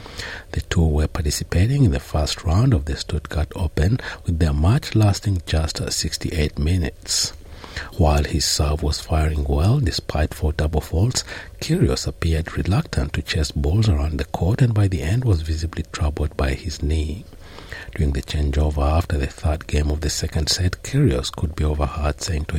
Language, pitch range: English, 75-105 Hz